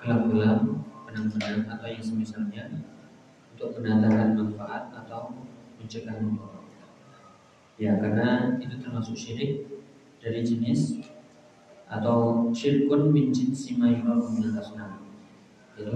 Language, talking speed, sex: Indonesian, 80 wpm, male